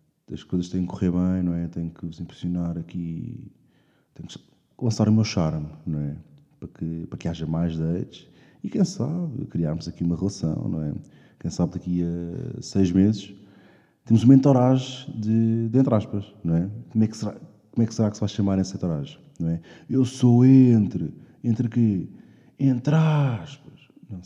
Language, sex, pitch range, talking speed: Portuguese, male, 90-125 Hz, 190 wpm